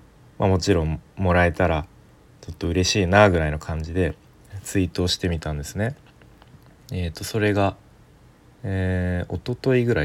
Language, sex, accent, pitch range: Japanese, male, native, 85-110 Hz